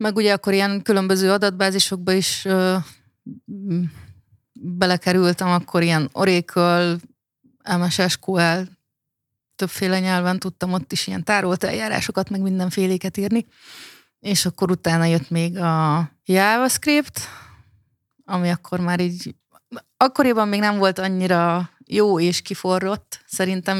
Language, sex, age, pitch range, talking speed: Hungarian, female, 30-49, 170-195 Hz, 110 wpm